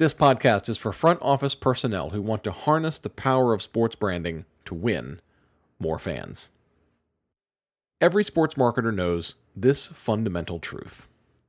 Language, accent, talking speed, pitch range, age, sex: English, American, 140 wpm, 90-135 Hz, 40-59, male